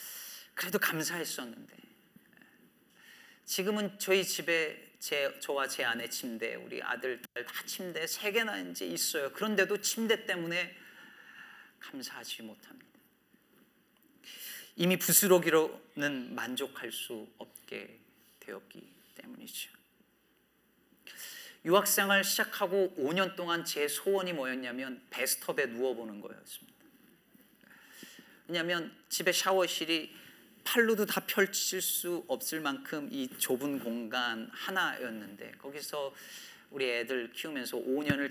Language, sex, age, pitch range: Korean, male, 40-59, 130-195 Hz